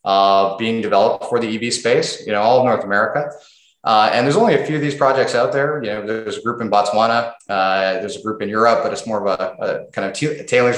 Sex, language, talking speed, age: male, English, 260 wpm, 30-49